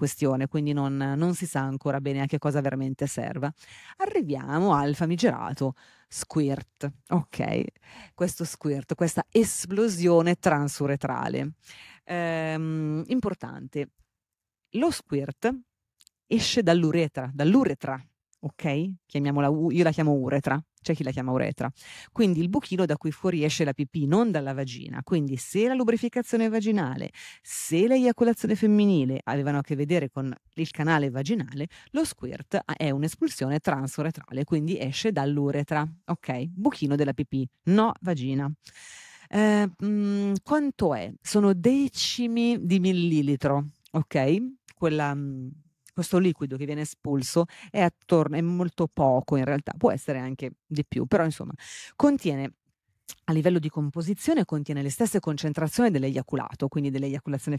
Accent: native